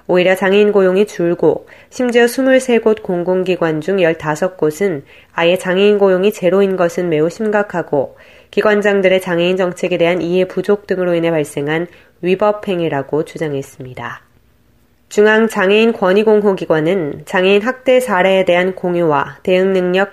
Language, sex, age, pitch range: Korean, female, 20-39, 175-205 Hz